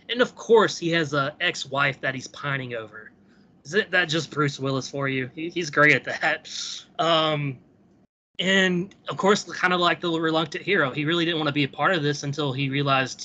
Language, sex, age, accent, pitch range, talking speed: English, male, 20-39, American, 145-180 Hz, 210 wpm